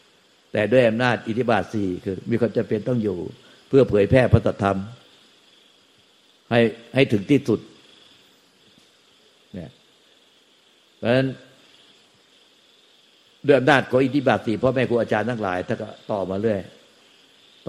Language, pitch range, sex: Thai, 100-115 Hz, male